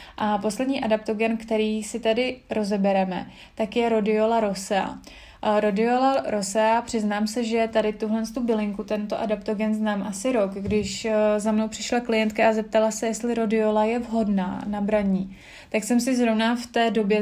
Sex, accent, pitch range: female, native, 215-230 Hz